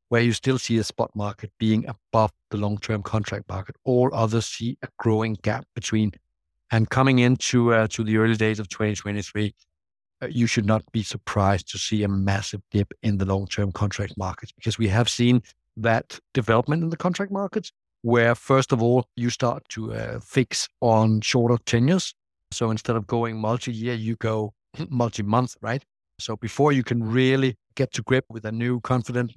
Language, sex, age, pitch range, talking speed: English, male, 60-79, 105-120 Hz, 180 wpm